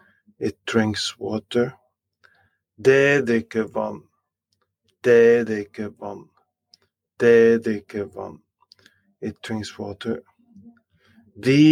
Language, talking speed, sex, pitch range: English, 80 wpm, male, 105-125 Hz